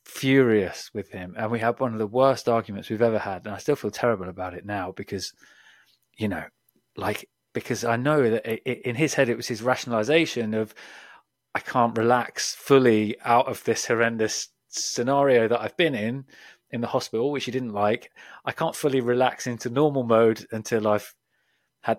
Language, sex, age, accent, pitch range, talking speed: English, male, 20-39, British, 110-135 Hz, 185 wpm